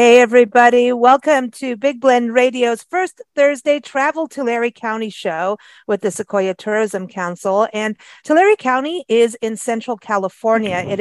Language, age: English, 50-69